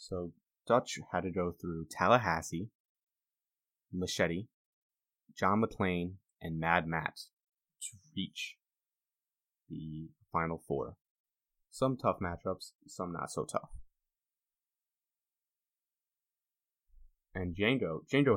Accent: American